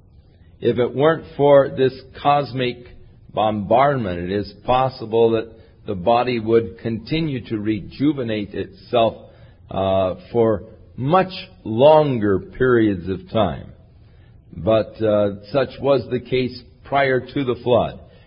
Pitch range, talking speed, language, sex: 100-130 Hz, 115 wpm, English, male